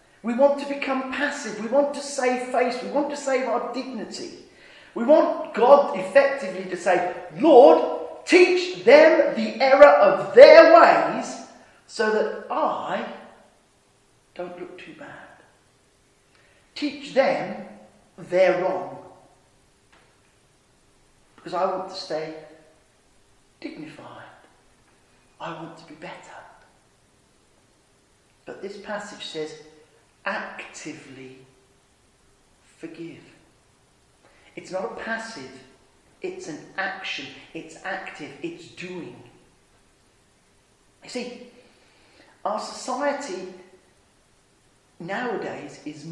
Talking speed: 100 wpm